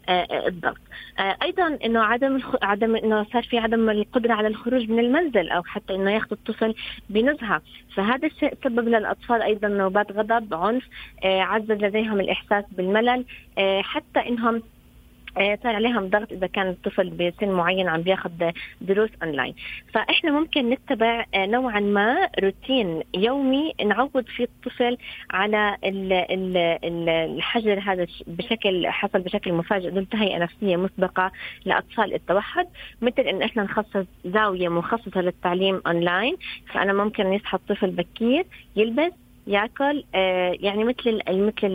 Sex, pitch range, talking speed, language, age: female, 190-235 Hz, 130 wpm, Arabic, 20-39